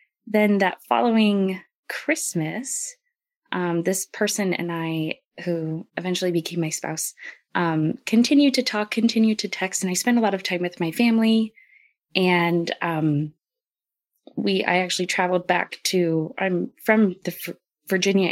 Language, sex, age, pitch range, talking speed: English, female, 20-39, 165-215 Hz, 140 wpm